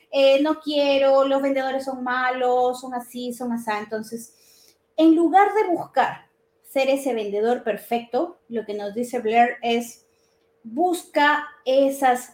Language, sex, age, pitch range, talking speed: Spanish, female, 30-49, 230-320 Hz, 135 wpm